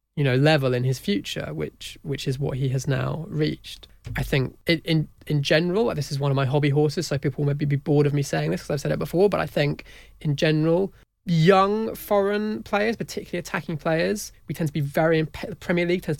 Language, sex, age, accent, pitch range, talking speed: English, male, 20-39, British, 140-160 Hz, 220 wpm